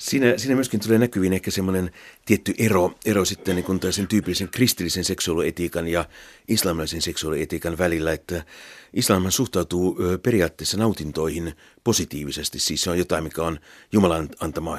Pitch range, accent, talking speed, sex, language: 80-95 Hz, native, 135 wpm, male, Finnish